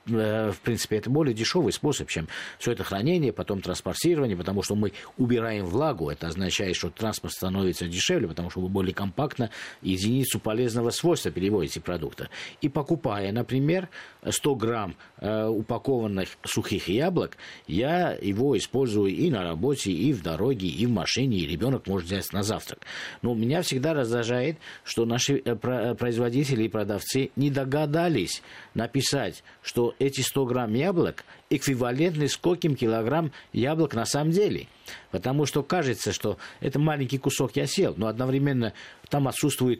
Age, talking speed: 50-69, 145 wpm